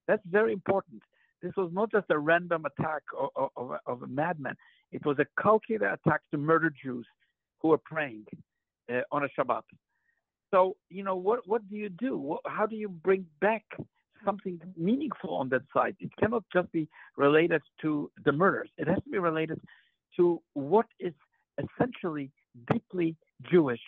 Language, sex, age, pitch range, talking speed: English, male, 60-79, 155-215 Hz, 165 wpm